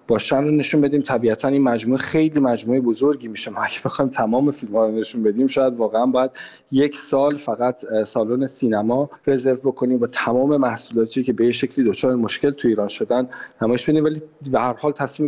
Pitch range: 120-145 Hz